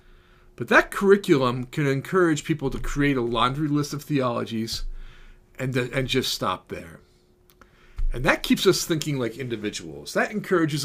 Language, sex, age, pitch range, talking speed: English, male, 40-59, 120-160 Hz, 150 wpm